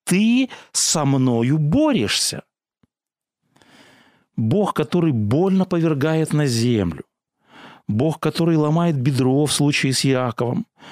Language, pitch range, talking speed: Russian, 140-180 Hz, 100 wpm